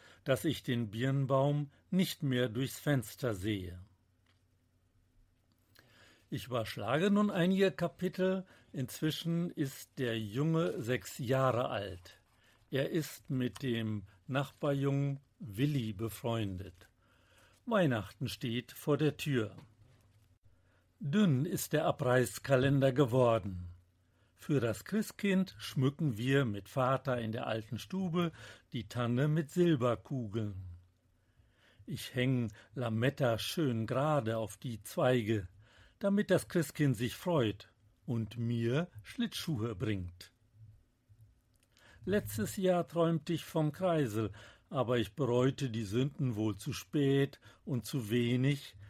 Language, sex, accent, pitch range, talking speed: German, male, German, 105-145 Hz, 105 wpm